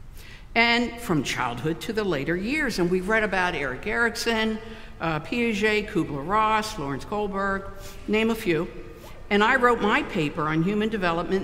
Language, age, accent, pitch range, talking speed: English, 60-79, American, 150-220 Hz, 150 wpm